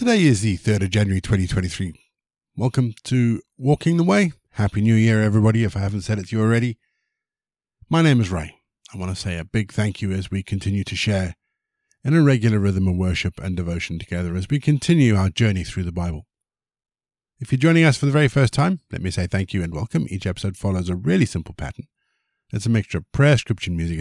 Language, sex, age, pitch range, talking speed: English, male, 50-69, 90-120 Hz, 220 wpm